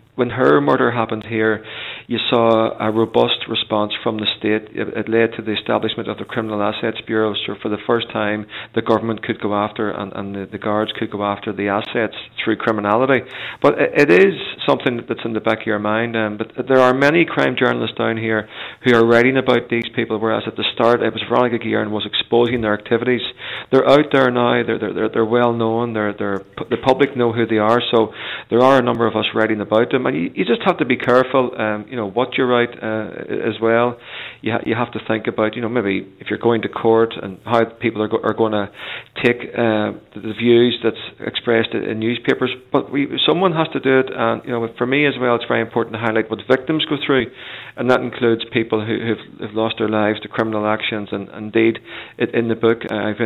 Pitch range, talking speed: 110-120 Hz, 225 wpm